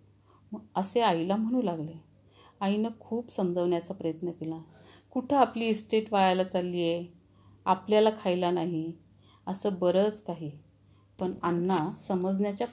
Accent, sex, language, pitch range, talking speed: native, female, Marathi, 160-205 Hz, 120 wpm